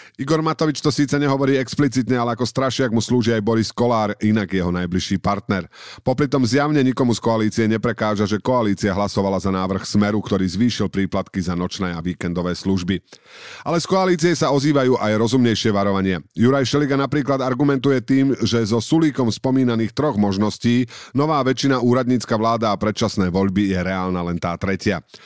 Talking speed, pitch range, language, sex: 165 wpm, 105-135 Hz, Slovak, male